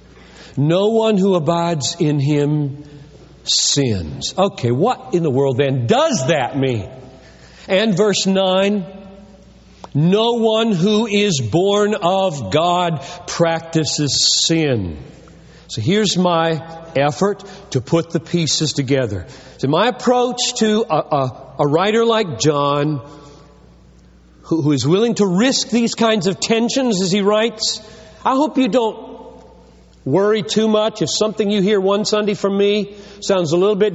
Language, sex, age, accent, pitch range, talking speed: English, male, 50-69, American, 145-215 Hz, 140 wpm